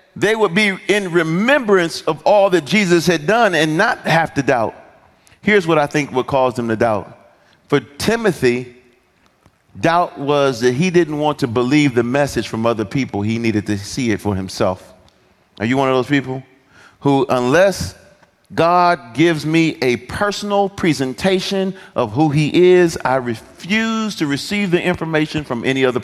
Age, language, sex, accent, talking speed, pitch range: 40-59, English, male, American, 170 wpm, 120-175 Hz